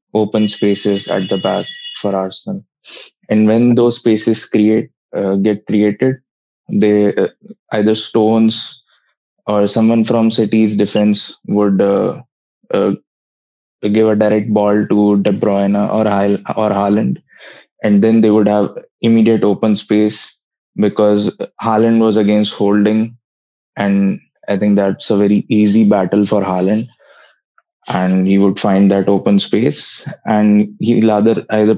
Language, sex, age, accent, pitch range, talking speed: English, male, 20-39, Indian, 100-110 Hz, 135 wpm